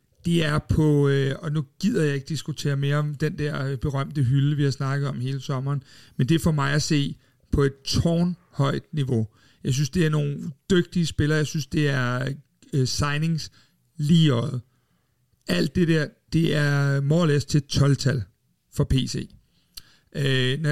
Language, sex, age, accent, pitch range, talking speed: Danish, male, 60-79, native, 140-165 Hz, 165 wpm